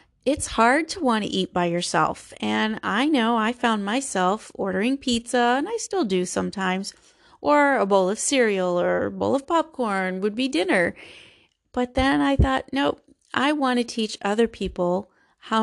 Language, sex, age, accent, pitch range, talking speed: English, female, 30-49, American, 195-260 Hz, 175 wpm